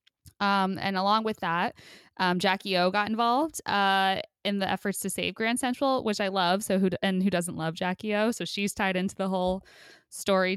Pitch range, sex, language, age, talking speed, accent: 175-215 Hz, female, English, 10-29, 210 wpm, American